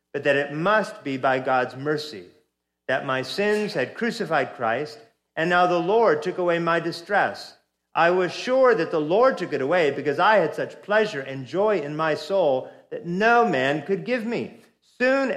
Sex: male